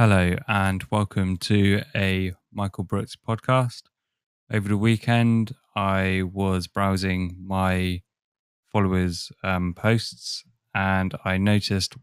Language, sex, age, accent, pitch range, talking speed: English, male, 20-39, British, 95-110 Hz, 105 wpm